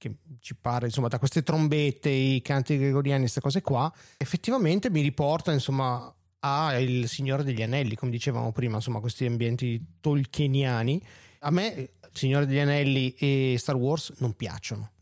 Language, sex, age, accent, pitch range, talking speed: Italian, male, 30-49, native, 120-150 Hz, 160 wpm